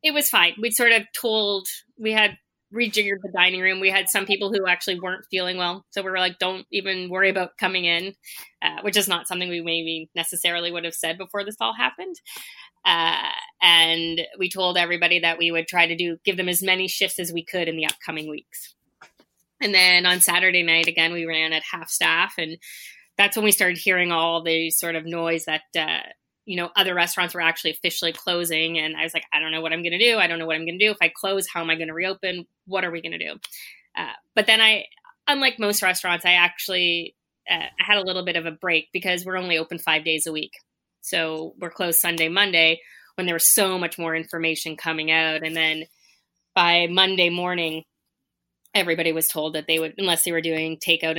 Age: 20-39